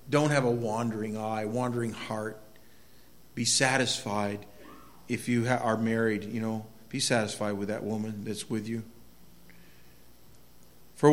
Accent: American